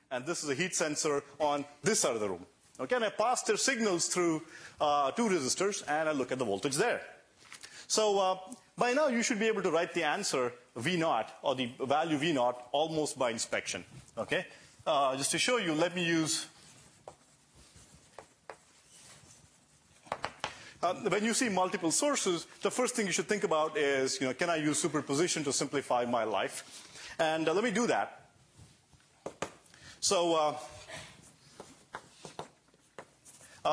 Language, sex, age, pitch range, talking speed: English, male, 30-49, 150-210 Hz, 160 wpm